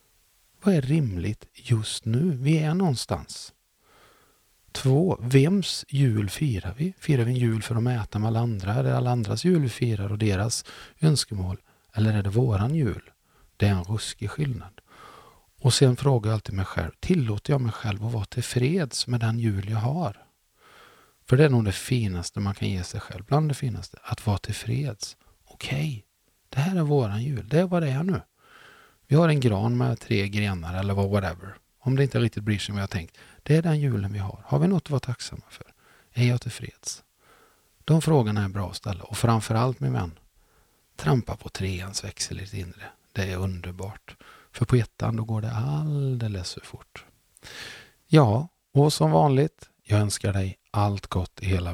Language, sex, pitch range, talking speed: Swedish, male, 100-135 Hz, 195 wpm